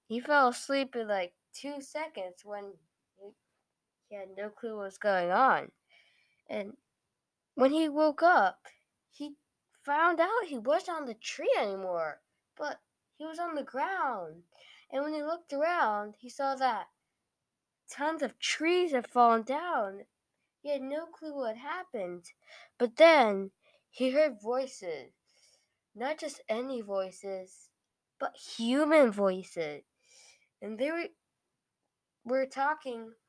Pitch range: 210-300 Hz